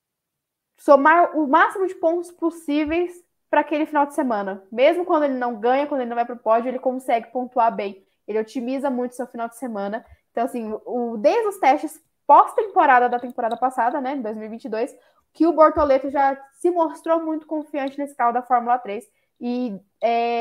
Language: Portuguese